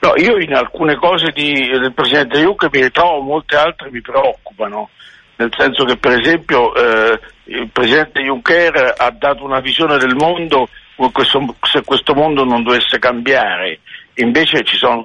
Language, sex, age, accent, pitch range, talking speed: Italian, male, 60-79, native, 125-160 Hz, 165 wpm